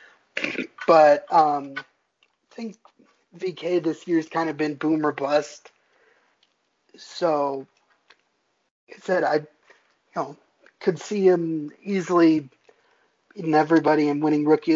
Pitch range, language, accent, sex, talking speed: 140-165 Hz, English, American, male, 120 wpm